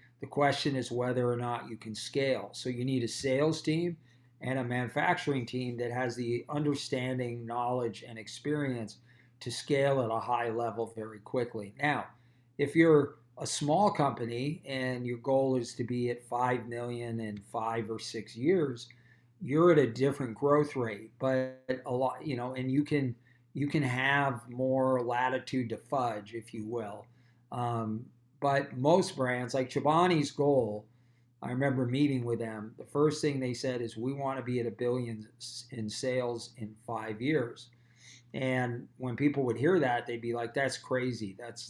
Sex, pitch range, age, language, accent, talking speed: male, 120-135 Hz, 40-59, English, American, 170 wpm